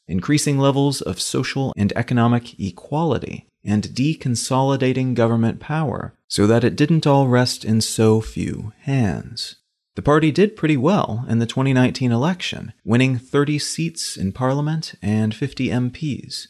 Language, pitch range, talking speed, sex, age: English, 110-135 Hz, 140 wpm, male, 30-49